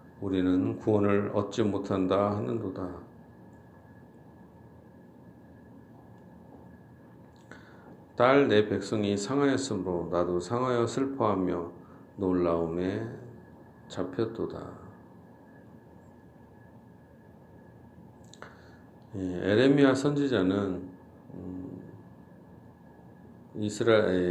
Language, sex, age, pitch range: Korean, male, 50-69, 90-115 Hz